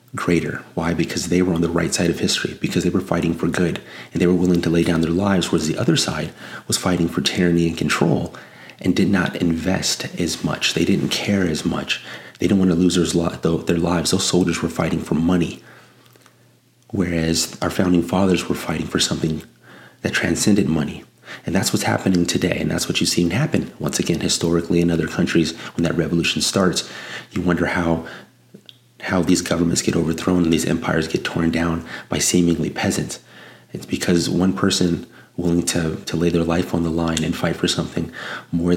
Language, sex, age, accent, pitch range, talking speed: English, male, 30-49, American, 85-90 Hz, 195 wpm